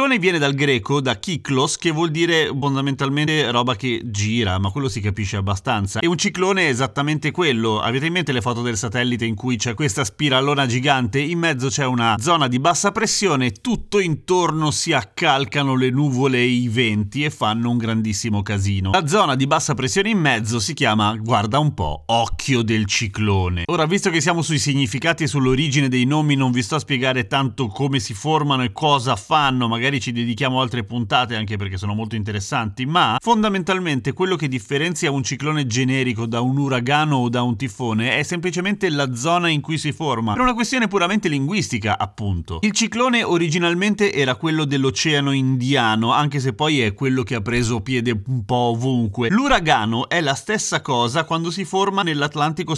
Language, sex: Italian, male